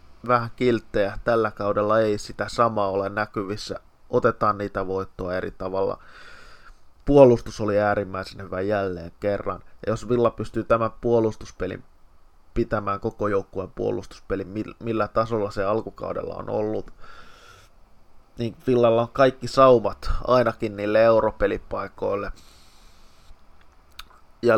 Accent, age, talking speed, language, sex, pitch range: native, 20-39, 105 wpm, Finnish, male, 95-115 Hz